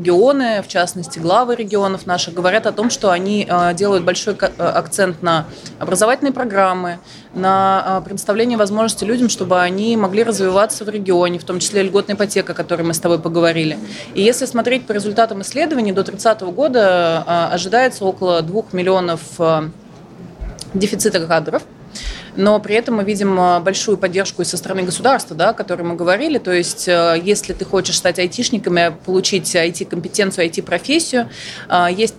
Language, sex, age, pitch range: Russian, female, 20-39, 175-215 Hz